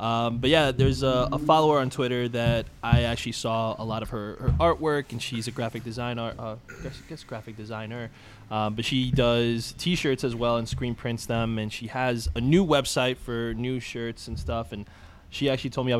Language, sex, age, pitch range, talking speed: English, male, 20-39, 110-130 Hz, 215 wpm